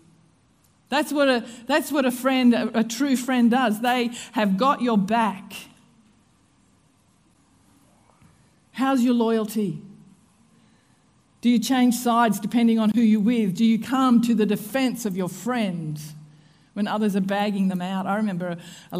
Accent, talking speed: Australian, 140 wpm